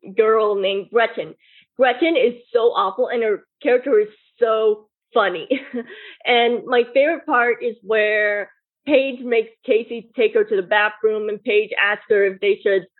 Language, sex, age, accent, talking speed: English, female, 20-39, American, 155 wpm